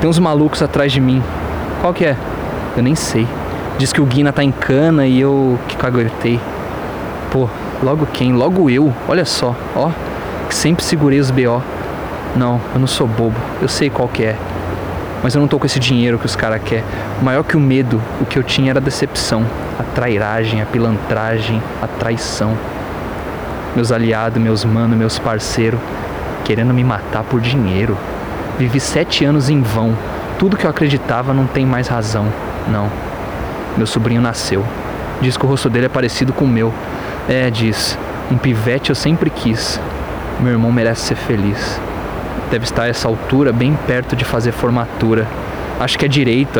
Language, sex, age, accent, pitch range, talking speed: Portuguese, male, 20-39, Brazilian, 110-135 Hz, 180 wpm